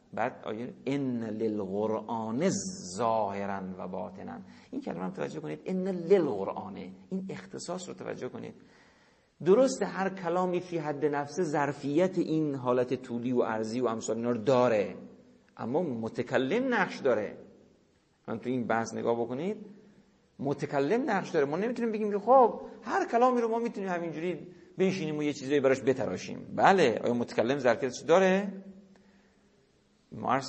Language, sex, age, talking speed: Persian, male, 50-69, 130 wpm